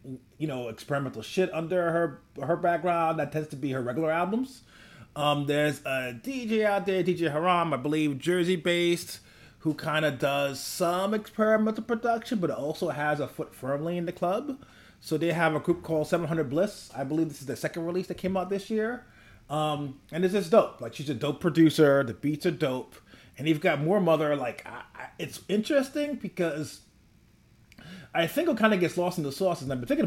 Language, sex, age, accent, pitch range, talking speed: English, male, 30-49, American, 130-175 Hz, 200 wpm